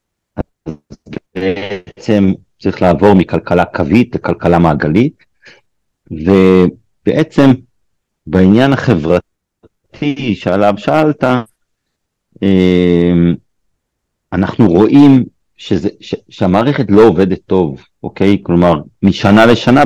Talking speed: 75 wpm